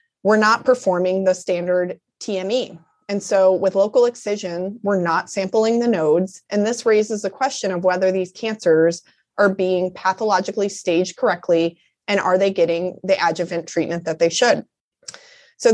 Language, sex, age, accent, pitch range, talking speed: English, female, 20-39, American, 180-220 Hz, 155 wpm